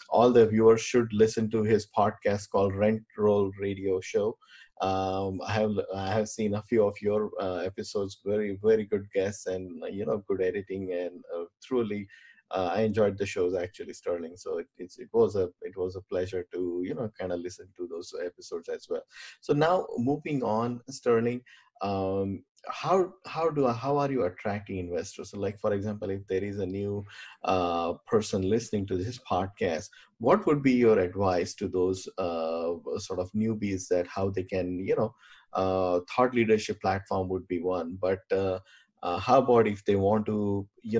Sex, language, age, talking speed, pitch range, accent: male, English, 20-39, 190 wpm, 95-115 Hz, Indian